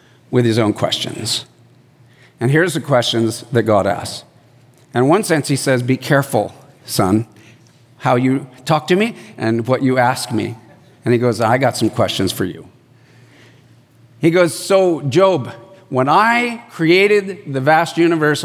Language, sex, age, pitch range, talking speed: English, male, 50-69, 125-205 Hz, 155 wpm